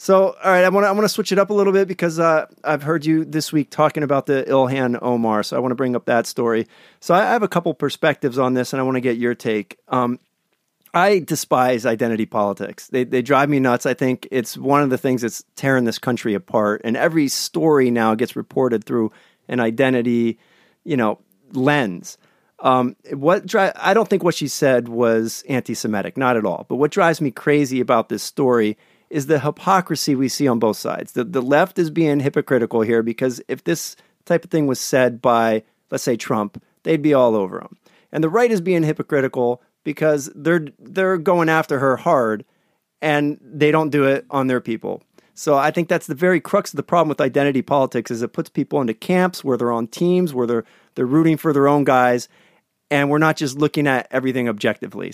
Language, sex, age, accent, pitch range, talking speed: English, male, 40-59, American, 125-160 Hz, 215 wpm